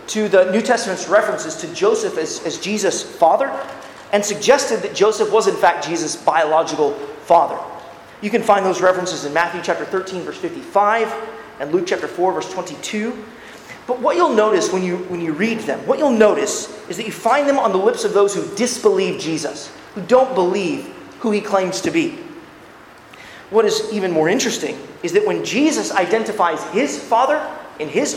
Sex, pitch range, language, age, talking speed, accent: male, 185-255 Hz, English, 30-49, 185 wpm, American